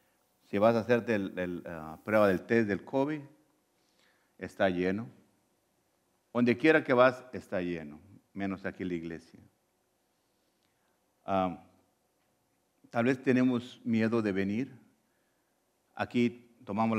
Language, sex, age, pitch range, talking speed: English, male, 50-69, 95-115 Hz, 110 wpm